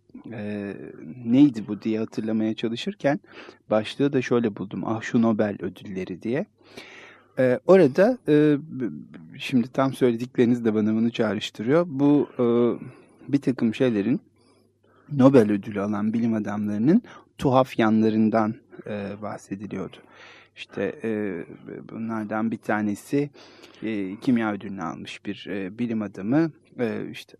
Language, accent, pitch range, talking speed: Turkish, native, 105-125 Hz, 115 wpm